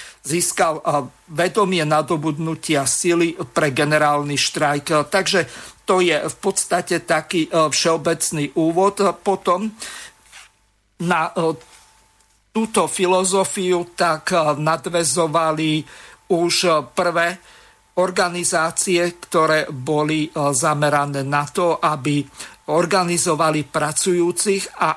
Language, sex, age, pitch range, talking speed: Slovak, male, 50-69, 150-175 Hz, 75 wpm